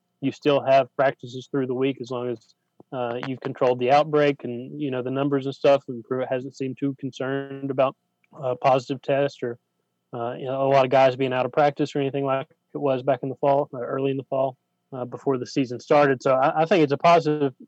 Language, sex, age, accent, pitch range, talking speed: English, male, 20-39, American, 130-140 Hz, 235 wpm